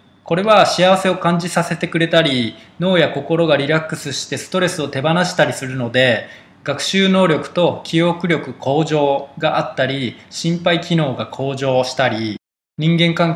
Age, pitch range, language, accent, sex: 20-39, 140-170 Hz, Japanese, native, male